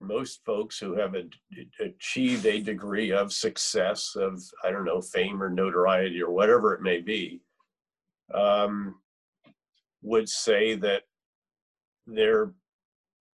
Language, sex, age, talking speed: English, male, 50-69, 115 wpm